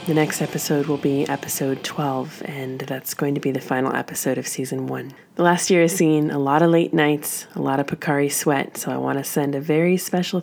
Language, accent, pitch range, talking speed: English, American, 145-175 Hz, 235 wpm